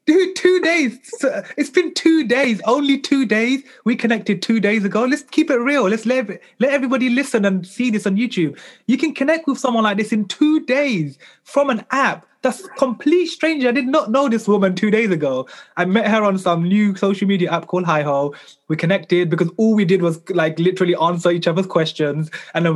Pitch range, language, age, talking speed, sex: 155-225 Hz, English, 20-39, 210 wpm, male